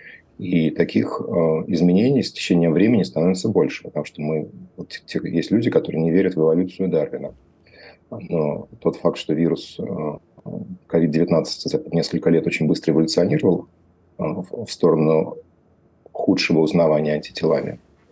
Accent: native